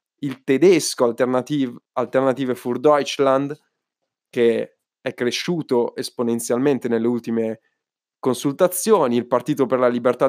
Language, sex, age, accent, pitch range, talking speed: Italian, male, 20-39, native, 120-160 Hz, 105 wpm